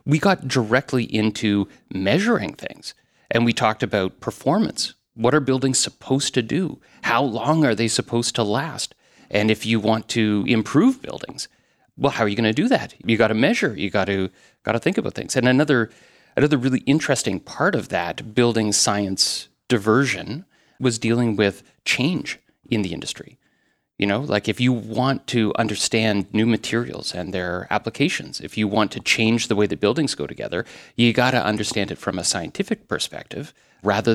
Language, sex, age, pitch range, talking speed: English, male, 30-49, 100-125 Hz, 175 wpm